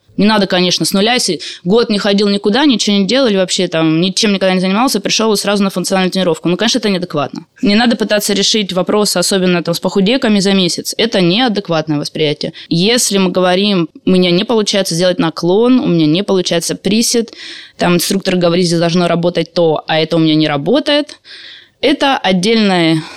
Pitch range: 175-215 Hz